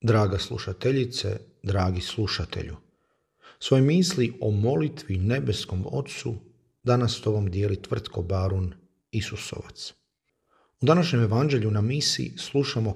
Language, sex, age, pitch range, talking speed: Croatian, male, 40-59, 105-130 Hz, 100 wpm